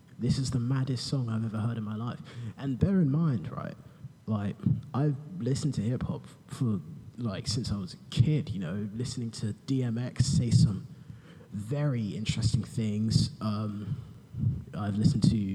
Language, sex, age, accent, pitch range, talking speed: English, male, 20-39, British, 115-150 Hz, 165 wpm